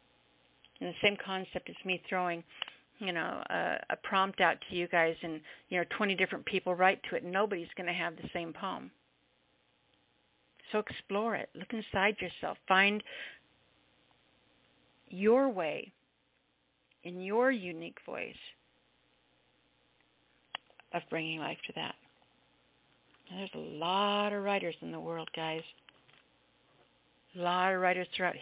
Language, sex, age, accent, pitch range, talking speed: English, female, 50-69, American, 160-190 Hz, 135 wpm